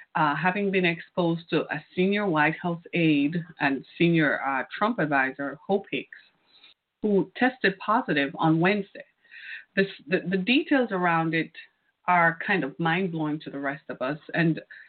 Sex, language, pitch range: female, English, 160-200 Hz